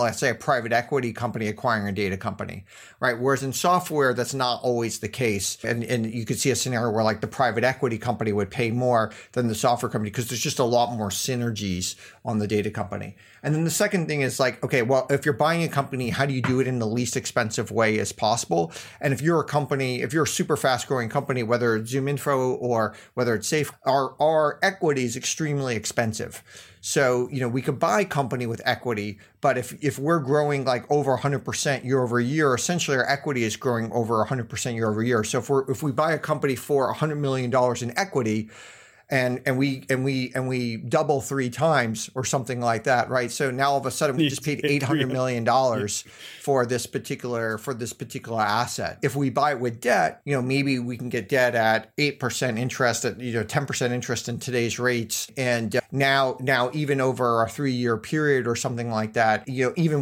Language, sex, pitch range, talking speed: English, male, 115-140 Hz, 225 wpm